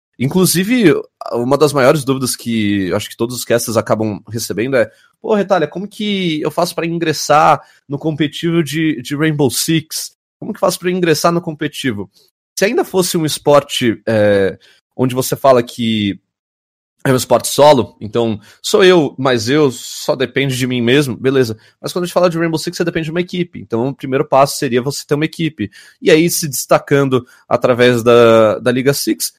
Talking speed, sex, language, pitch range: 190 wpm, male, Portuguese, 115-155 Hz